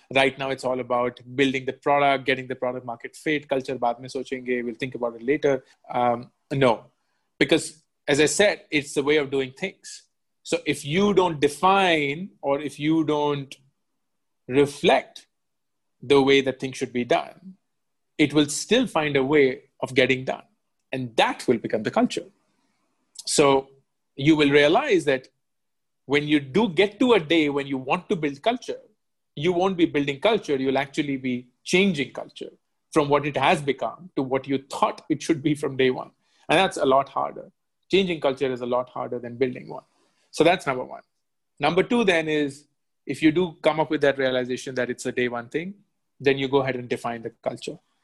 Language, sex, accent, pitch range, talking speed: English, male, Indian, 130-155 Hz, 185 wpm